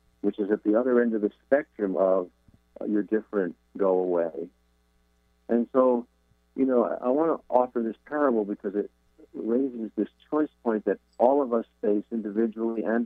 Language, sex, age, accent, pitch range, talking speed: English, male, 50-69, American, 85-115 Hz, 170 wpm